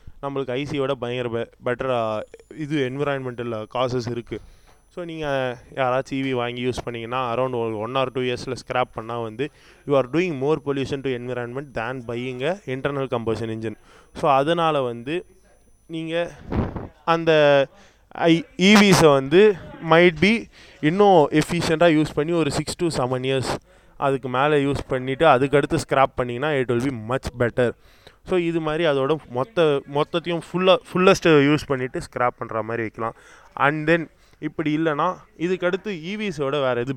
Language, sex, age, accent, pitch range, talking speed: Tamil, male, 20-39, native, 120-155 Hz, 140 wpm